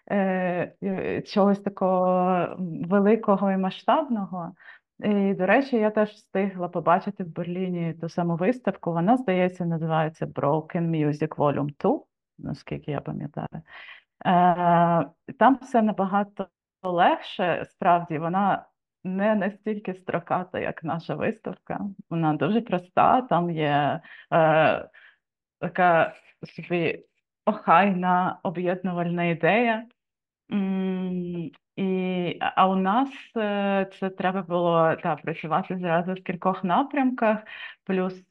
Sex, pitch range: female, 170-195 Hz